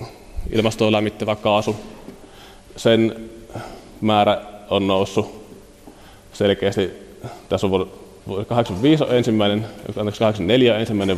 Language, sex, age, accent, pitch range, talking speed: Finnish, male, 30-49, native, 90-110 Hz, 75 wpm